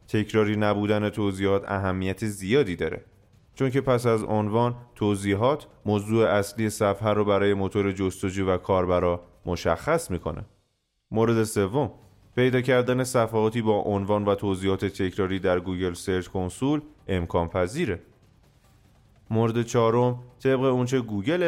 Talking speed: 125 wpm